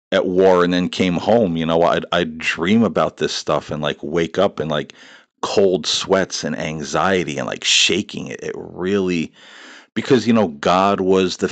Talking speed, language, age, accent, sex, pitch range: 190 wpm, English, 50-69, American, male, 80-100 Hz